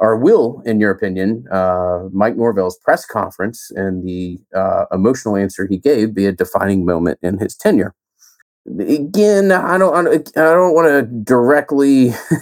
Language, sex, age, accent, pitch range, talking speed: English, male, 30-49, American, 100-160 Hz, 155 wpm